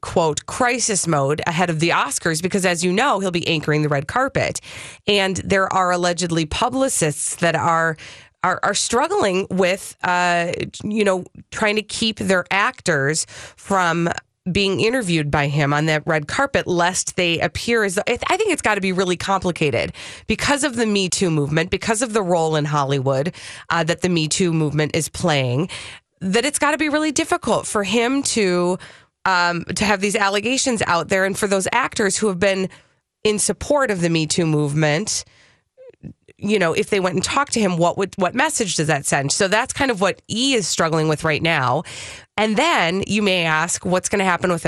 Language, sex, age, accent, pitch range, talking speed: English, female, 20-39, American, 160-210 Hz, 195 wpm